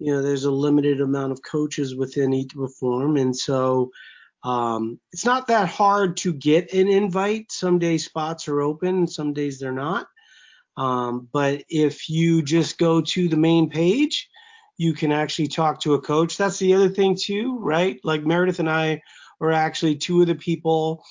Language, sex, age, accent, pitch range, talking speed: English, male, 30-49, American, 150-190 Hz, 185 wpm